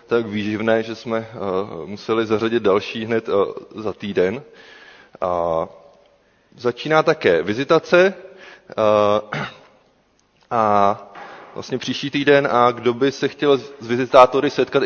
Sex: male